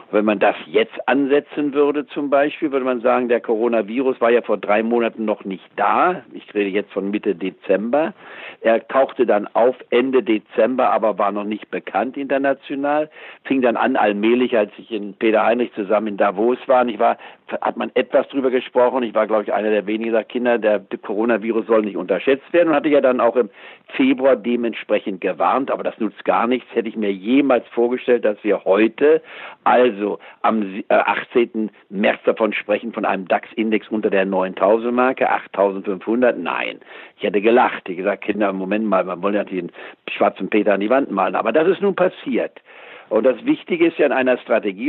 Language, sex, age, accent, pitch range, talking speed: German, male, 60-79, German, 105-140 Hz, 190 wpm